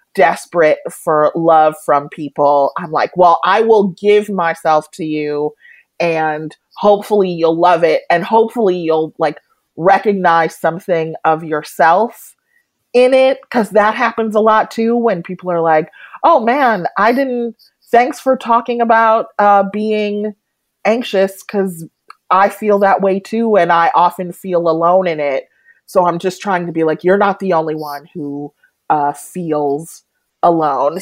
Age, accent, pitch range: 30-49, American, 165-230 Hz